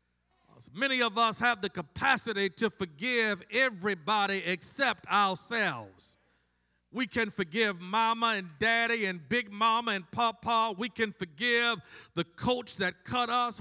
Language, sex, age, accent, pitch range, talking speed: English, male, 50-69, American, 210-260 Hz, 130 wpm